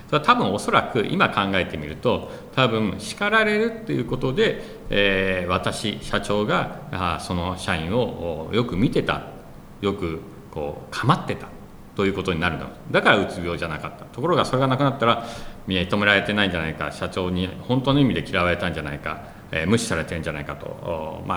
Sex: male